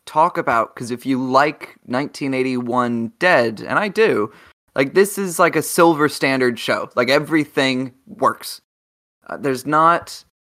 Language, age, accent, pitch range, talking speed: English, 20-39, American, 125-175 Hz, 140 wpm